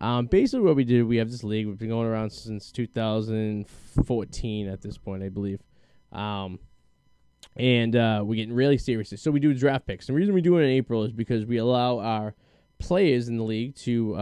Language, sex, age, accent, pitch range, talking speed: English, male, 10-29, American, 110-130 Hz, 205 wpm